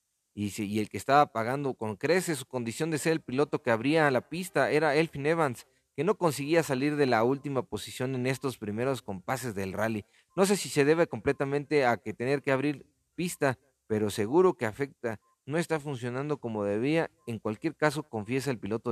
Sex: male